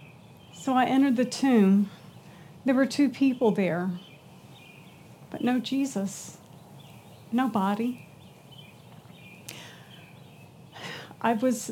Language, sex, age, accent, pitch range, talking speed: English, female, 40-59, American, 250-320 Hz, 85 wpm